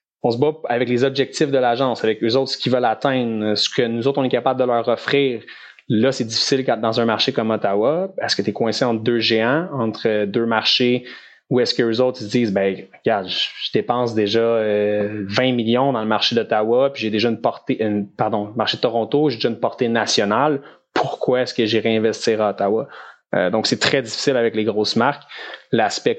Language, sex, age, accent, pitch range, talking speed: French, male, 20-39, Canadian, 110-125 Hz, 215 wpm